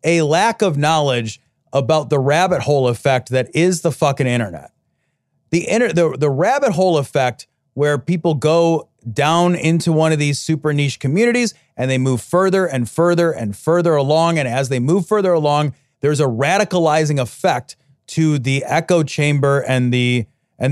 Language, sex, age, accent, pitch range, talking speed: English, male, 30-49, American, 135-205 Hz, 170 wpm